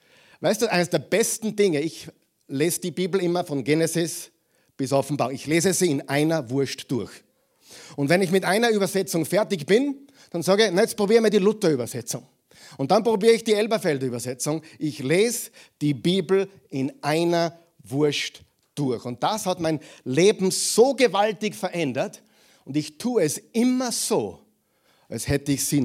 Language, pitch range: German, 150-215 Hz